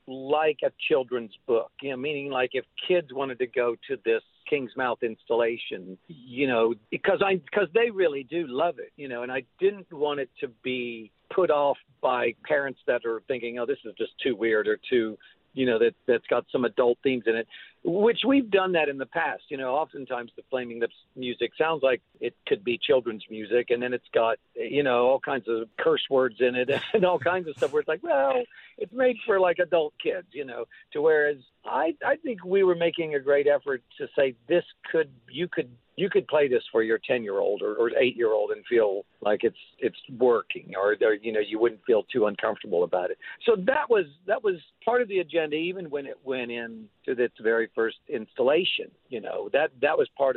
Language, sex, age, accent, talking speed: English, male, 50-69, American, 225 wpm